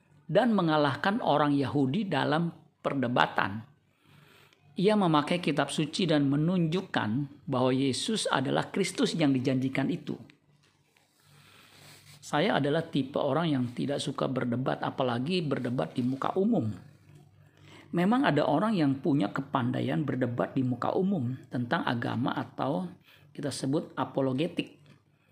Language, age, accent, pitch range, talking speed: Indonesian, 50-69, native, 135-150 Hz, 115 wpm